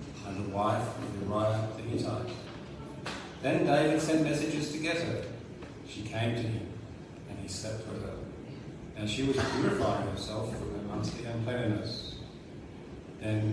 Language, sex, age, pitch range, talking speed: English, male, 40-59, 105-125 Hz, 145 wpm